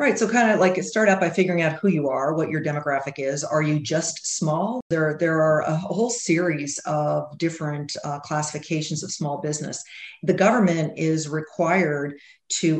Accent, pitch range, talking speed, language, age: American, 150-175 Hz, 185 wpm, English, 40-59